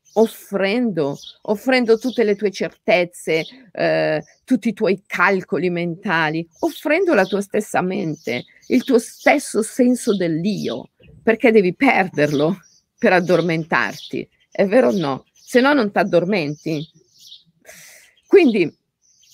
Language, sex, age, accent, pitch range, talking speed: Italian, female, 50-69, native, 165-220 Hz, 115 wpm